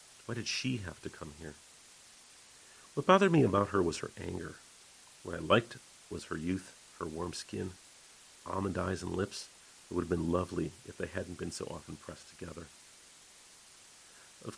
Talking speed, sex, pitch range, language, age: 175 wpm, male, 85-105 Hz, English, 40-59